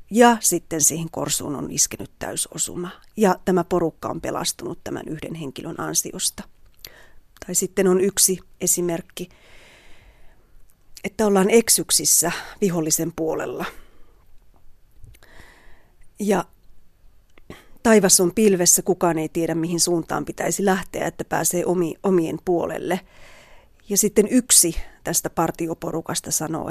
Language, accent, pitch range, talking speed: Finnish, native, 160-195 Hz, 105 wpm